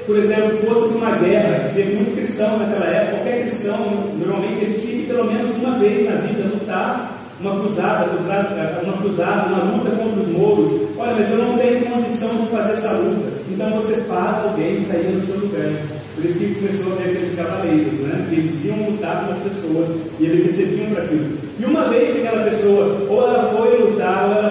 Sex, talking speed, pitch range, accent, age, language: male, 210 wpm, 185-225 Hz, Brazilian, 30-49, Portuguese